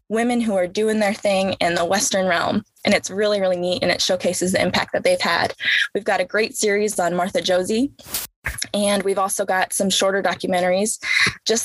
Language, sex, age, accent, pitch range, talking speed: English, female, 20-39, American, 185-225 Hz, 200 wpm